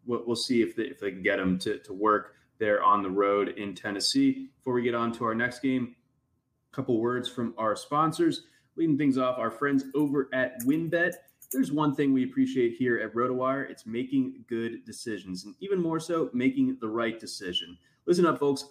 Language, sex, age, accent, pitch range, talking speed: English, male, 20-39, American, 120-160 Hz, 200 wpm